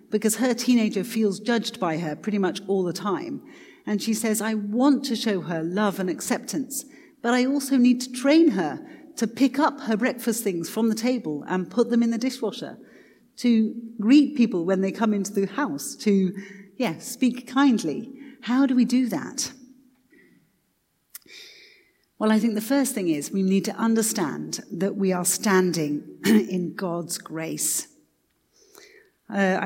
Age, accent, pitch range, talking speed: 40-59, British, 180-260 Hz, 165 wpm